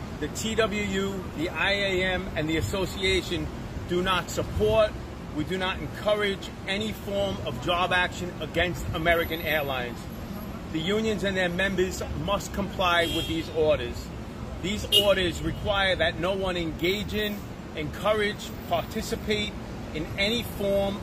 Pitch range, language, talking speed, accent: 170-200 Hz, English, 130 wpm, American